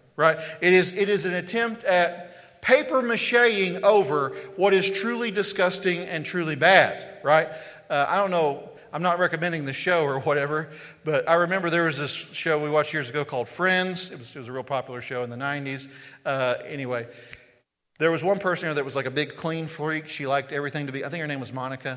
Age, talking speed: 40-59, 215 wpm